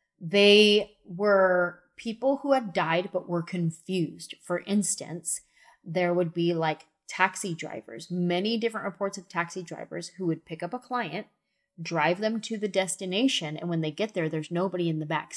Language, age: English, 20-39